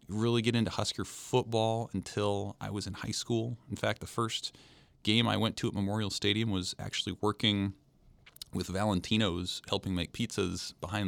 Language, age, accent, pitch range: English, 30-49, American, 90-110 Hz